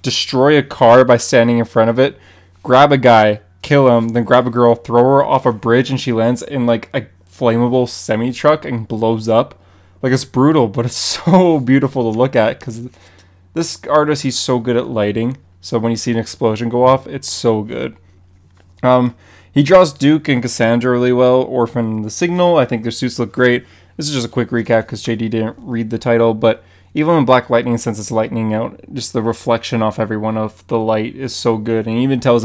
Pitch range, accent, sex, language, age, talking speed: 110-130 Hz, American, male, English, 20-39, 215 wpm